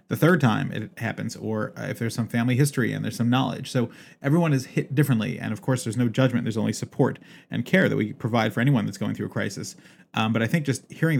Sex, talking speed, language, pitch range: male, 250 wpm, English, 115-135 Hz